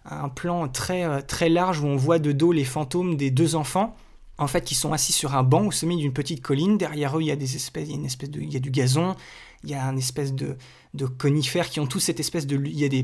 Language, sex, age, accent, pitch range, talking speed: French, male, 20-39, French, 145-175 Hz, 245 wpm